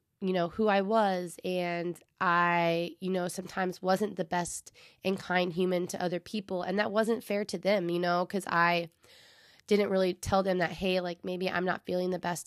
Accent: American